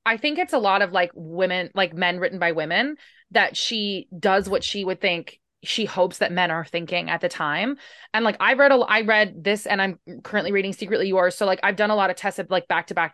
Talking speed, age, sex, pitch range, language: 255 wpm, 20-39, female, 180-225 Hz, English